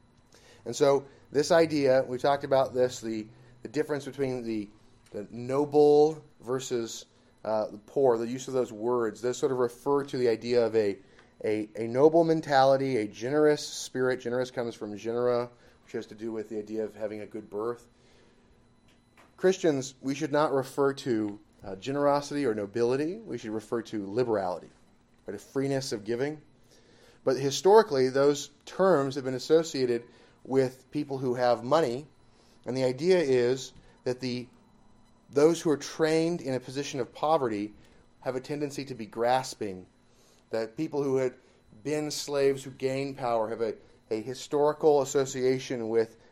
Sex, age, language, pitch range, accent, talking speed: male, 30-49, English, 120-140 Hz, American, 160 wpm